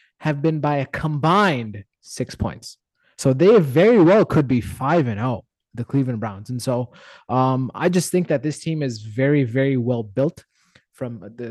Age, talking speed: 20-39, 180 wpm